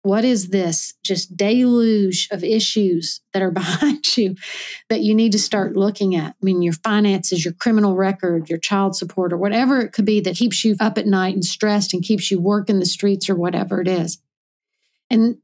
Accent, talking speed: American, 200 wpm